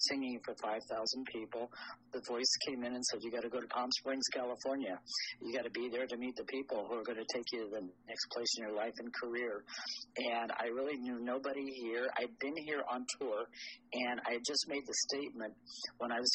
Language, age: English, 50-69